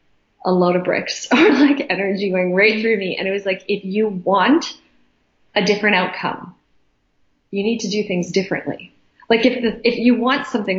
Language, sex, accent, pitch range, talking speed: Swedish, female, American, 180-220 Hz, 190 wpm